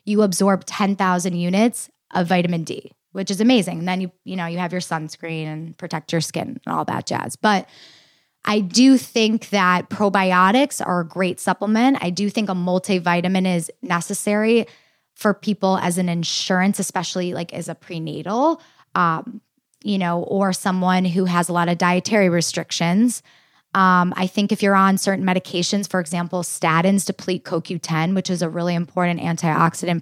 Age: 10-29